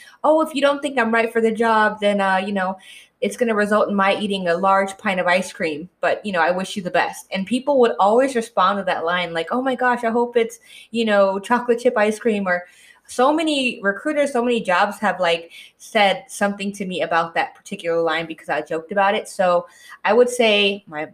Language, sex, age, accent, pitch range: Korean, female, 20-39, American, 185-245 Hz